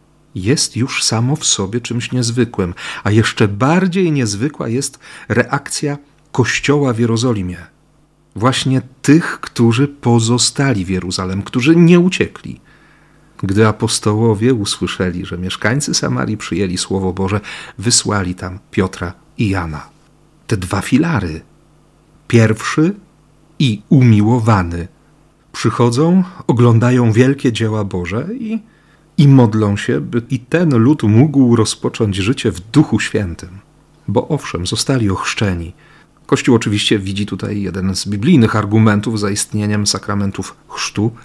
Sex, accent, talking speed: male, native, 115 wpm